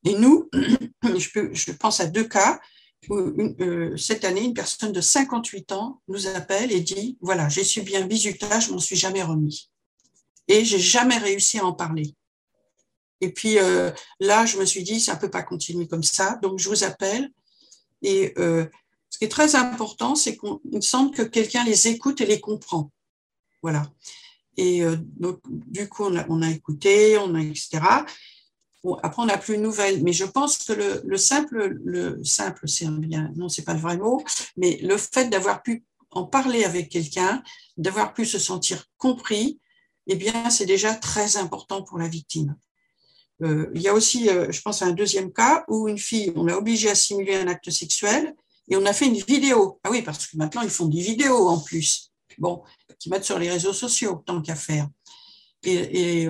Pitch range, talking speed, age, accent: 175-230 Hz, 205 wpm, 50-69, French